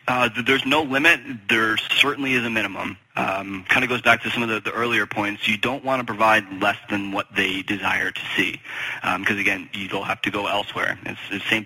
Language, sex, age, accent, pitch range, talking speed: English, male, 20-39, American, 100-115 Hz, 230 wpm